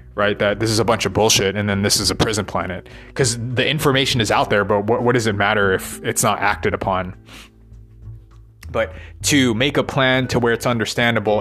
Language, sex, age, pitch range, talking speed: English, male, 20-39, 100-125 Hz, 215 wpm